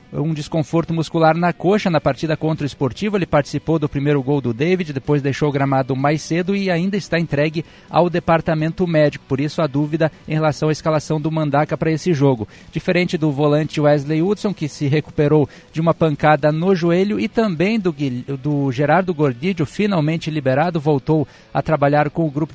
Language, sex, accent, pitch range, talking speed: Portuguese, male, Brazilian, 150-175 Hz, 185 wpm